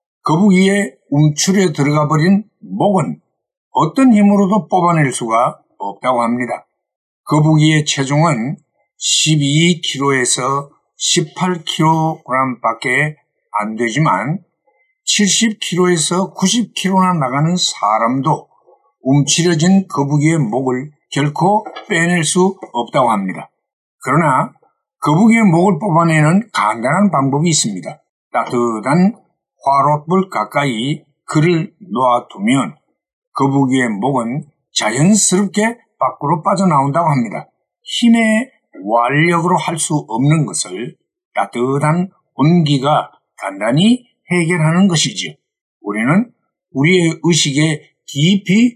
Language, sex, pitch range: Korean, male, 145-195 Hz